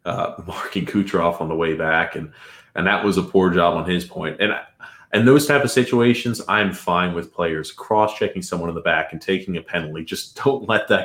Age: 30-49